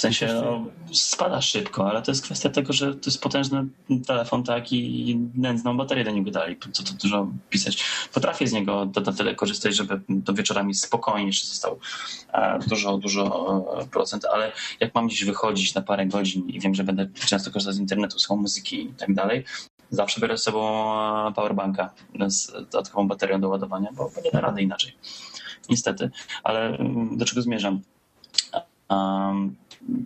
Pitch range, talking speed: 100-130 Hz, 165 wpm